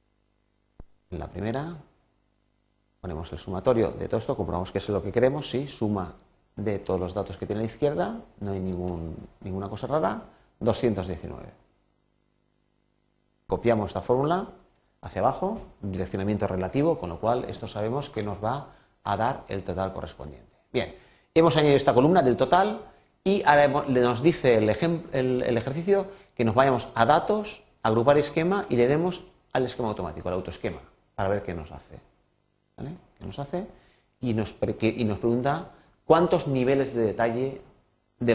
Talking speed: 165 wpm